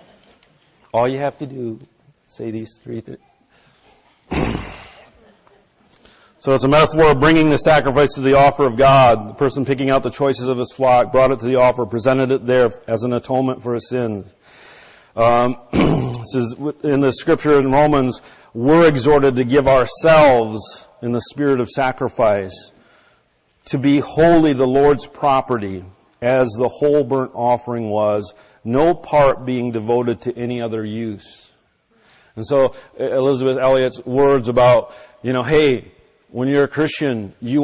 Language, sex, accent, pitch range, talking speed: English, male, American, 120-140 Hz, 155 wpm